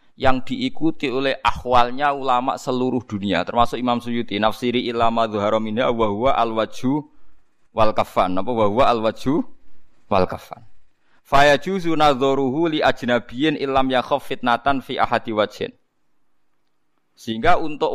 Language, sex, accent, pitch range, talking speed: Indonesian, male, native, 120-190 Hz, 115 wpm